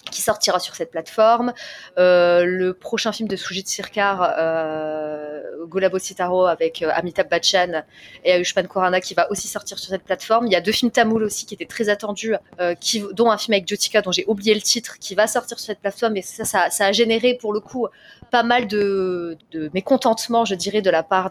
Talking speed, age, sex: 220 wpm, 20-39, female